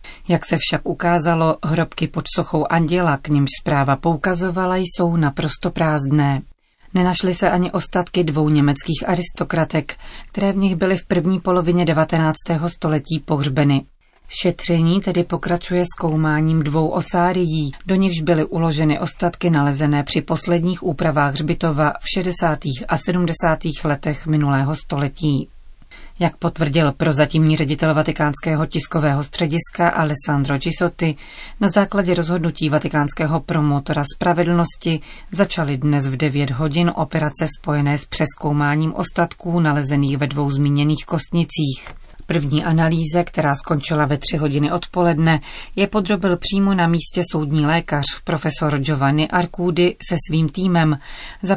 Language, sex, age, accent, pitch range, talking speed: Czech, female, 40-59, native, 150-175 Hz, 125 wpm